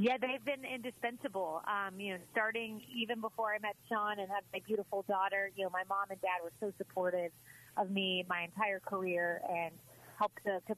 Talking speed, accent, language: 200 wpm, American, English